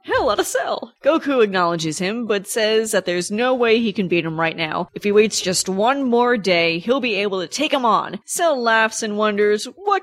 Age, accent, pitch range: 30-49, American, 185-230 Hz